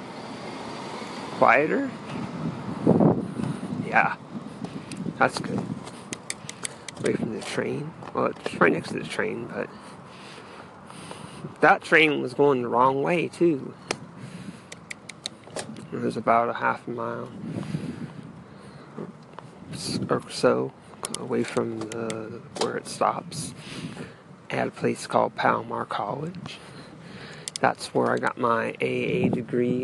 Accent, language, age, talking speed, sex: American, English, 30-49, 105 wpm, male